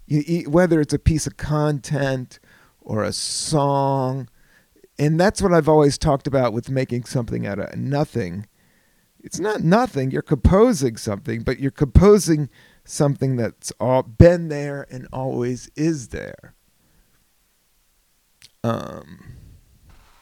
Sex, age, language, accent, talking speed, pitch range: male, 50-69, English, American, 120 wpm, 120-160 Hz